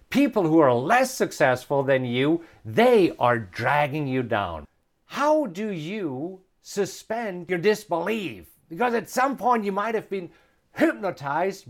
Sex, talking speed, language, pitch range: male, 140 wpm, English, 140-205 Hz